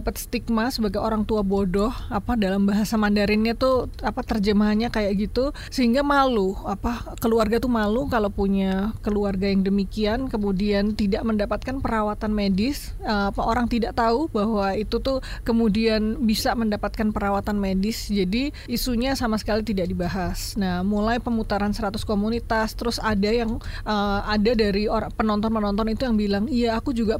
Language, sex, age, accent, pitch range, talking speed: Indonesian, female, 30-49, native, 210-240 Hz, 155 wpm